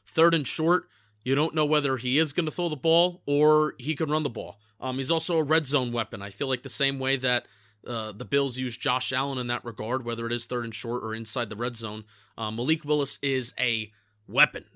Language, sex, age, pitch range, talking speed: English, male, 30-49, 120-155 Hz, 245 wpm